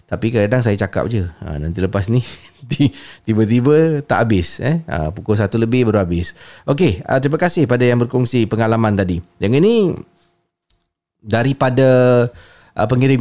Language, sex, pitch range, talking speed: Malay, male, 95-125 Hz, 130 wpm